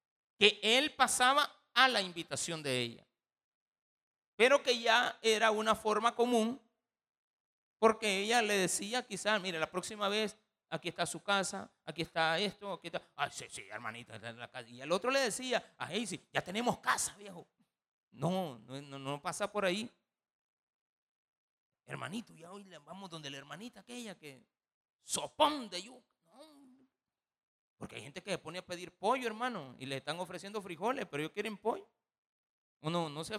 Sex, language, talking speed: male, Spanish, 165 wpm